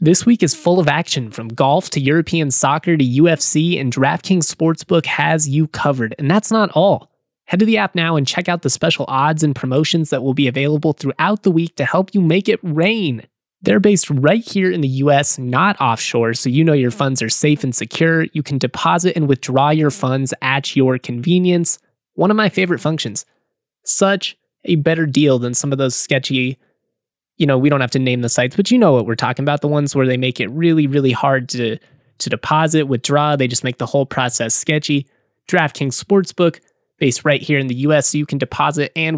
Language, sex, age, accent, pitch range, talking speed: English, male, 20-39, American, 130-165 Hz, 215 wpm